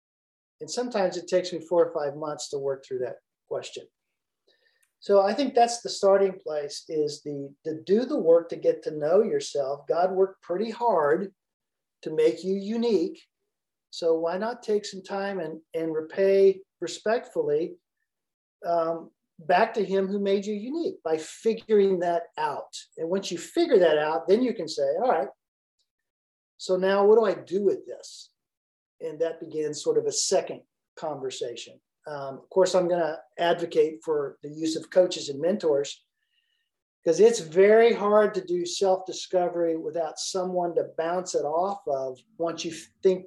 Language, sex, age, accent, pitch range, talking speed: English, male, 40-59, American, 160-235 Hz, 170 wpm